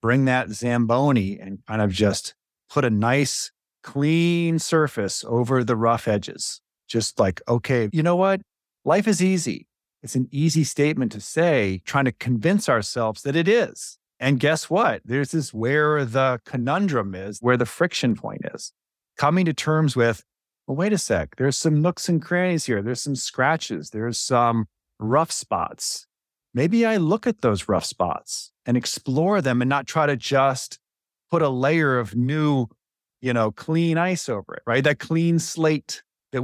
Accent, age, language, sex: American, 40-59, English, male